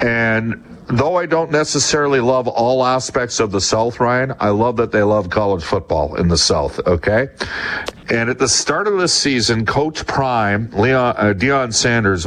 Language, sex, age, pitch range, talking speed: English, male, 50-69, 95-125 Hz, 175 wpm